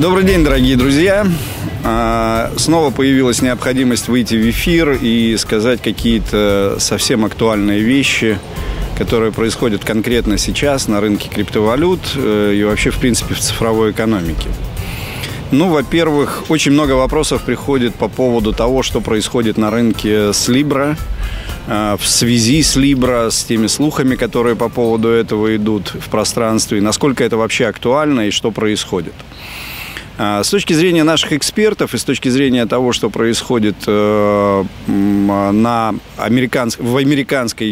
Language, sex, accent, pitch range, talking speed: Russian, male, native, 105-130 Hz, 130 wpm